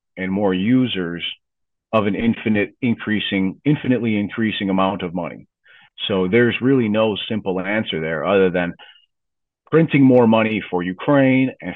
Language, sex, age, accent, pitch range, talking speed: English, male, 40-59, American, 95-120 Hz, 140 wpm